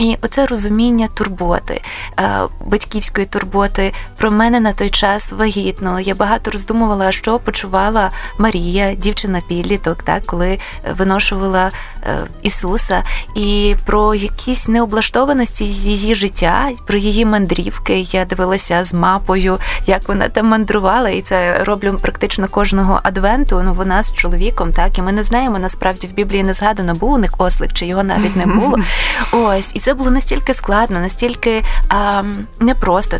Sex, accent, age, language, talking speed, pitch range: female, native, 20-39, Ukrainian, 145 wpm, 195-235 Hz